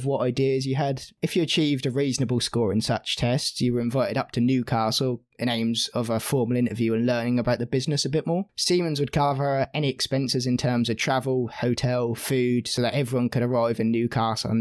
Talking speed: 215 wpm